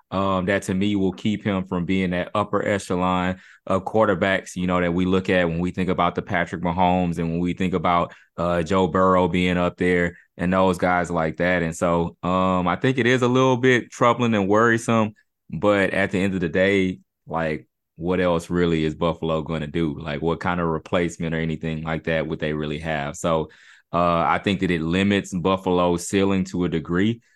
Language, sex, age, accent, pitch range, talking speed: English, male, 20-39, American, 85-95 Hz, 215 wpm